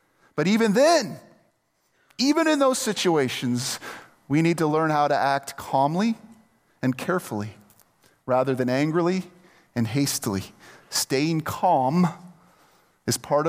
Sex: male